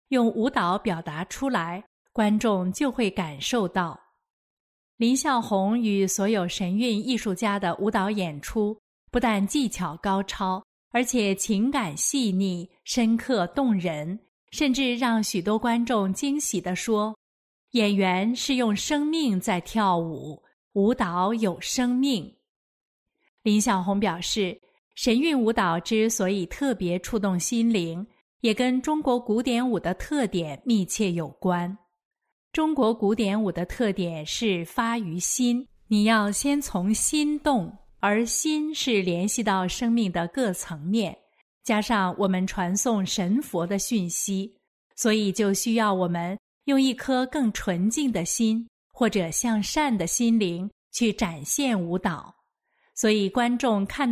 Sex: female